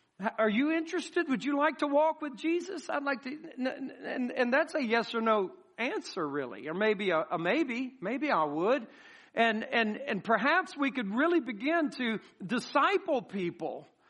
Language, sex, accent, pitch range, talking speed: English, male, American, 235-310 Hz, 175 wpm